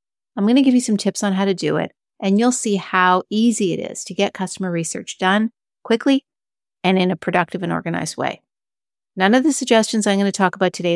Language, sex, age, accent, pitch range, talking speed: English, female, 40-59, American, 175-205 Hz, 230 wpm